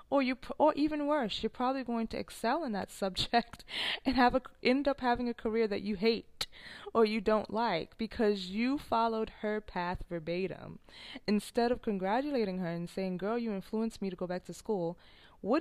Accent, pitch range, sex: American, 175-235 Hz, female